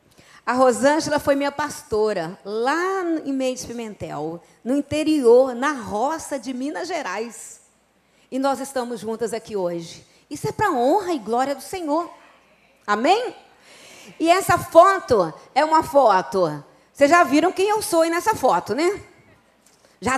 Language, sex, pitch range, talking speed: Portuguese, female, 235-340 Hz, 145 wpm